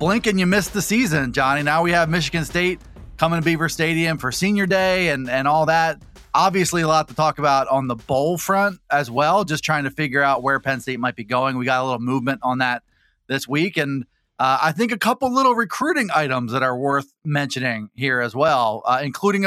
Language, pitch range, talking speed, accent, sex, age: English, 135-185 Hz, 225 wpm, American, male, 30-49